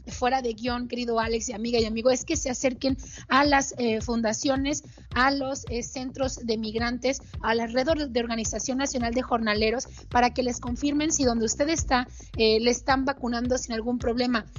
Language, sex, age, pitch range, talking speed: Spanish, female, 30-49, 220-260 Hz, 185 wpm